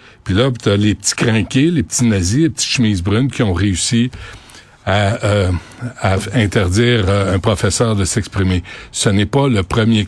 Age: 60-79